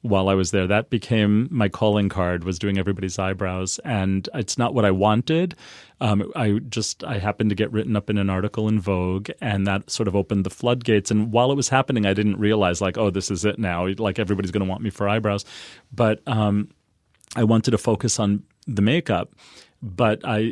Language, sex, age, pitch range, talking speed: English, male, 30-49, 100-110 Hz, 215 wpm